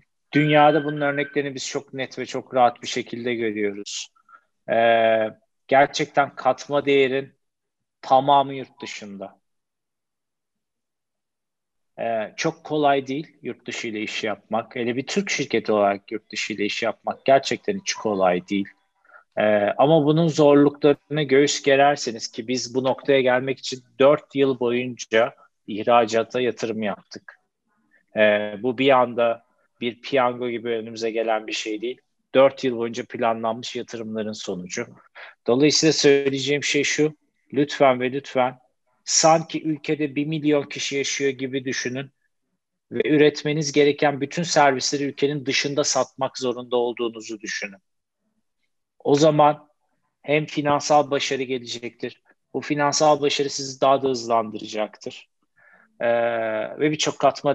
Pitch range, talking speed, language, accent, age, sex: 115-145 Hz, 125 wpm, Turkish, native, 40-59, male